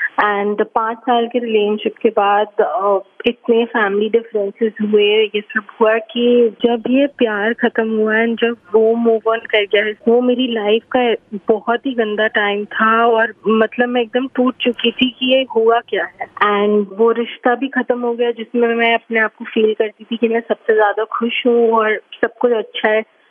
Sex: female